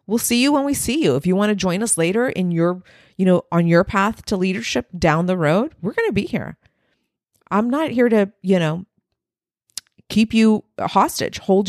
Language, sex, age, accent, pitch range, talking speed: English, female, 40-59, American, 160-205 Hz, 210 wpm